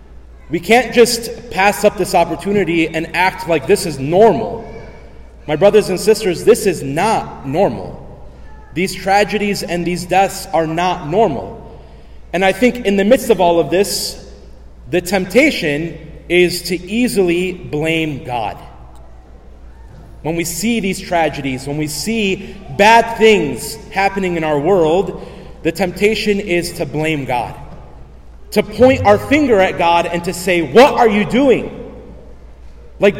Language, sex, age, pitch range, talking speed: English, male, 30-49, 150-210 Hz, 145 wpm